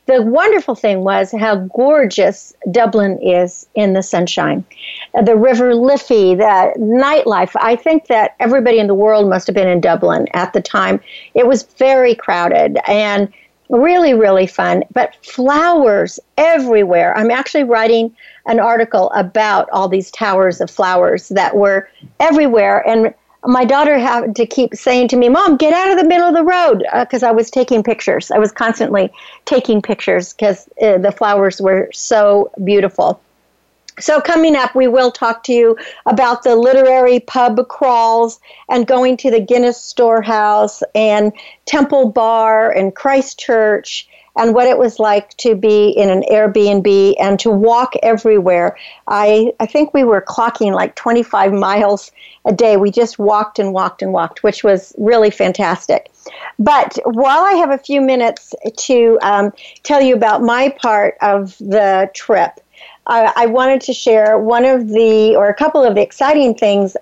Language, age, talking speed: English, 60-79, 165 wpm